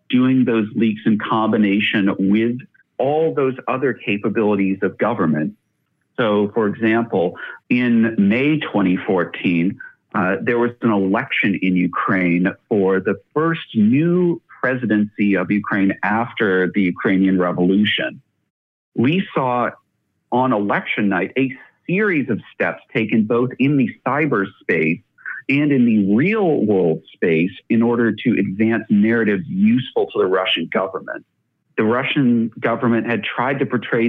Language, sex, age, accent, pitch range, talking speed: English, male, 50-69, American, 100-125 Hz, 130 wpm